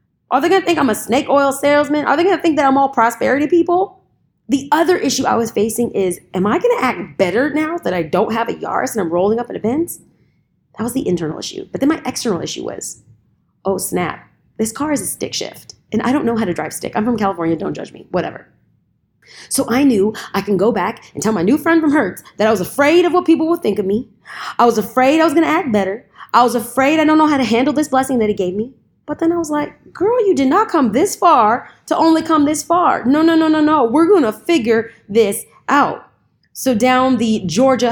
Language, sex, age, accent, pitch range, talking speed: English, female, 20-39, American, 220-295 Hz, 255 wpm